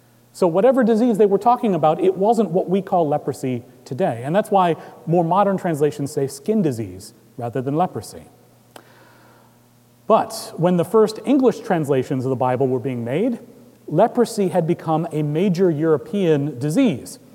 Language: English